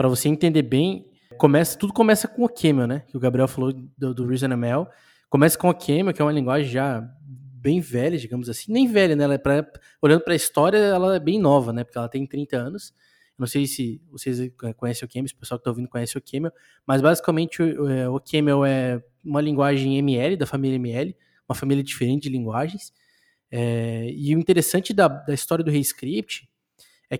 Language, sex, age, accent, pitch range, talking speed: Portuguese, male, 20-39, Brazilian, 130-160 Hz, 210 wpm